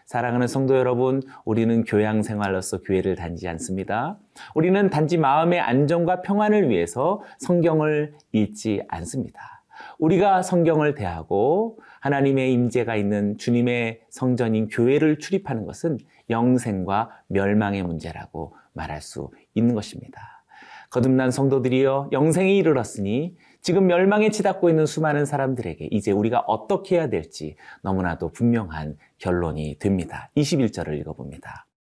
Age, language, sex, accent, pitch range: 30-49, Korean, male, native, 100-160 Hz